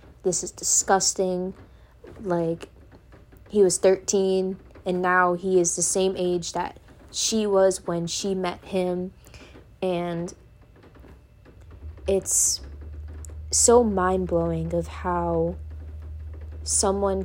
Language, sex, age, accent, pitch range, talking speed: English, female, 20-39, American, 165-190 Hz, 95 wpm